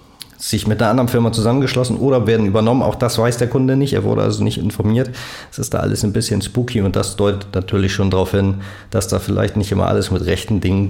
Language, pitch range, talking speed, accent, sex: German, 95-115 Hz, 235 wpm, German, male